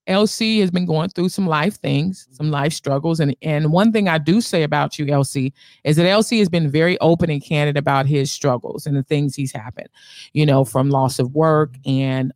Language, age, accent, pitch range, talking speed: English, 30-49, American, 145-190 Hz, 220 wpm